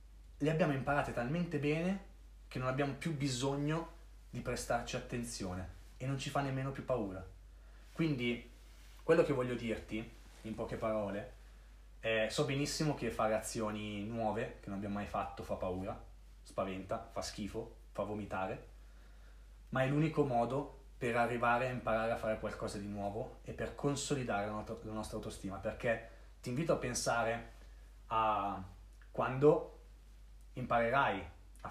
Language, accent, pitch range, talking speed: Italian, native, 105-135 Hz, 140 wpm